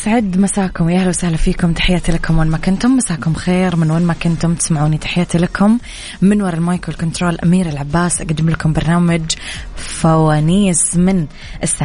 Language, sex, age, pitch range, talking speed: Arabic, female, 20-39, 160-190 Hz, 155 wpm